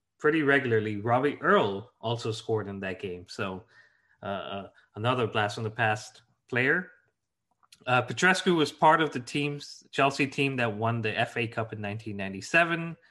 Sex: male